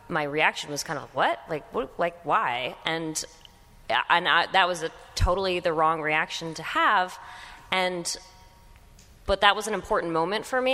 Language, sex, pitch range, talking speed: English, female, 150-185 Hz, 175 wpm